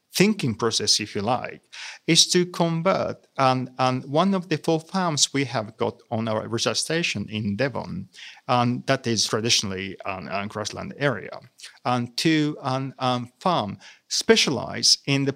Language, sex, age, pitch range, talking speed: English, male, 40-59, 110-155 Hz, 150 wpm